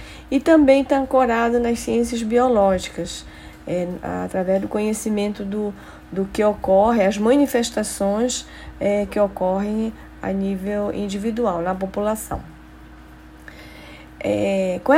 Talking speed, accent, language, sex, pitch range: 110 wpm, Brazilian, Portuguese, female, 185-240 Hz